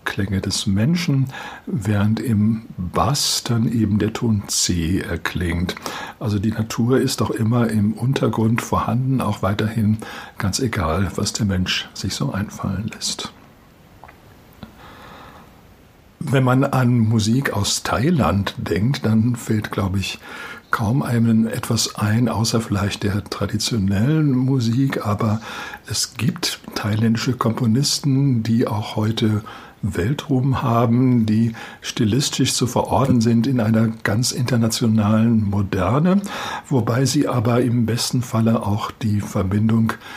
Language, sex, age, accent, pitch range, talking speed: German, male, 60-79, German, 105-125 Hz, 120 wpm